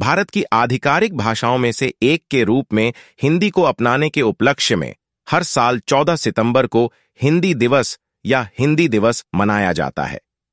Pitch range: 115-150 Hz